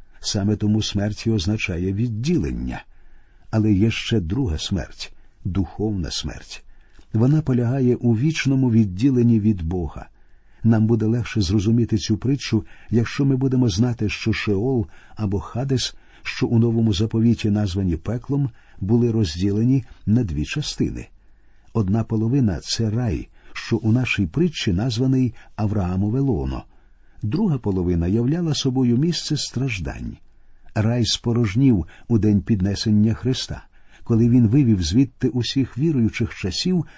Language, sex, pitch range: Ukrainian, male, 100-125 Hz